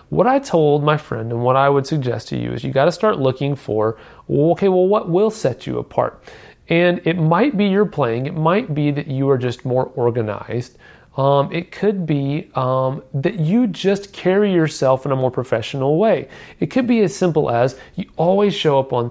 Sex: male